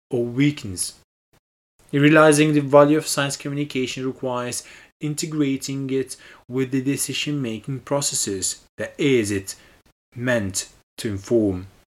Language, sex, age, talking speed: English, male, 30-49, 110 wpm